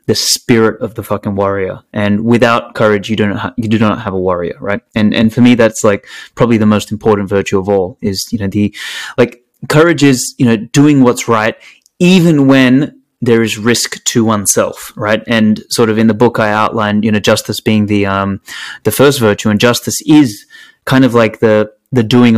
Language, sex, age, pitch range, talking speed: English, male, 20-39, 105-130 Hz, 210 wpm